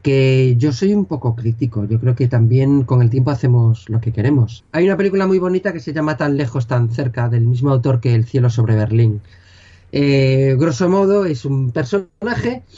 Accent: Spanish